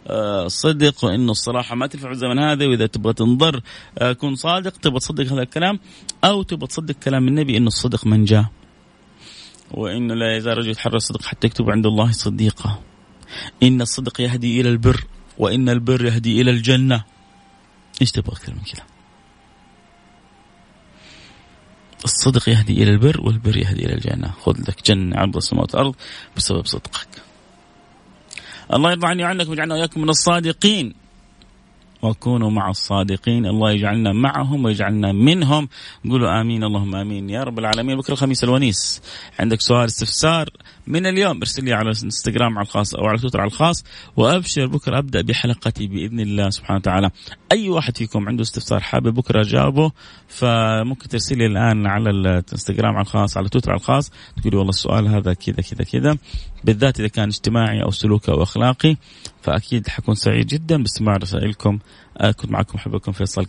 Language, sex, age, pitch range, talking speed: Arabic, male, 30-49, 105-130 Hz, 150 wpm